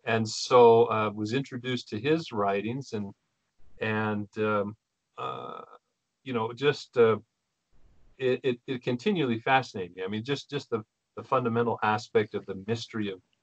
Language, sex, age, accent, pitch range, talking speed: English, male, 40-59, American, 105-125 Hz, 155 wpm